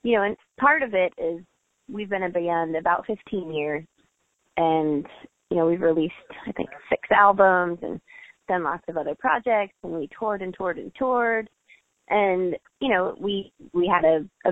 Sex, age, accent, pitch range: female, 20-39, American, 170-200 Hz